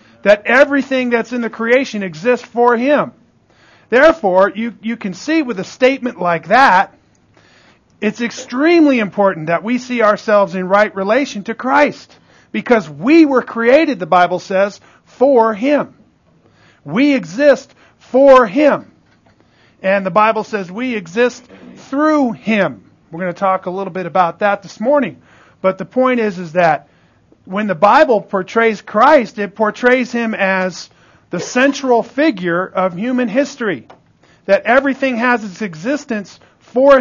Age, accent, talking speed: 50-69, American, 145 wpm